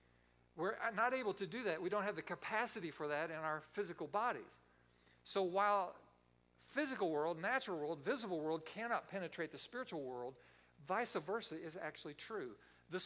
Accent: American